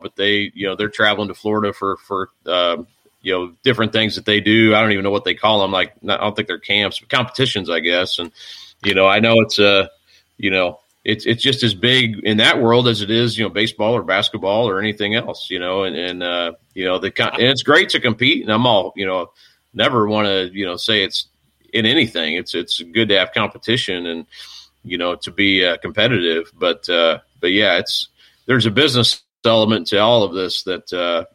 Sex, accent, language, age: male, American, English, 40-59